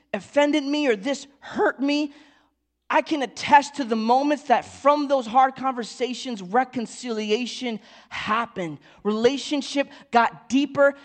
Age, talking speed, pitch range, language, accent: 20-39, 120 wpm, 220-280 Hz, English, American